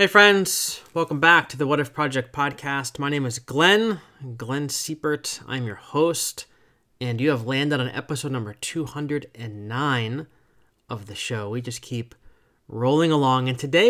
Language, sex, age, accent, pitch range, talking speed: English, male, 30-49, American, 115-145 Hz, 160 wpm